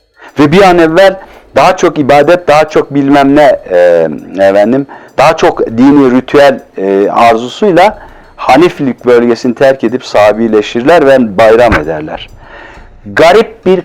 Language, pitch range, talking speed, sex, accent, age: Turkish, 130-175 Hz, 125 wpm, male, native, 50-69